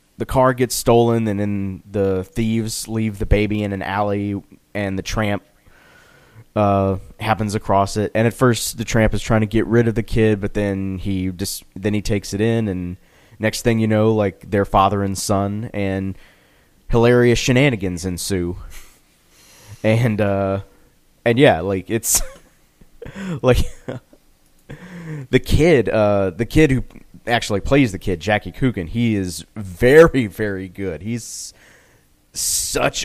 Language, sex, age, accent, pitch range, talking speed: English, male, 30-49, American, 95-115 Hz, 150 wpm